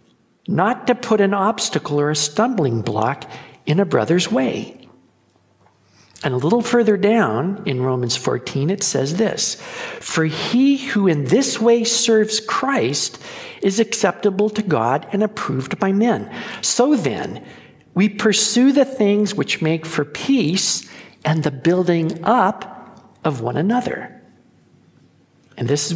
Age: 60-79